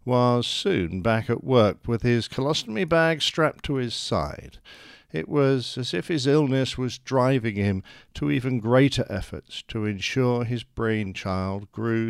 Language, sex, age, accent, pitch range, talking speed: English, male, 50-69, British, 95-130 Hz, 155 wpm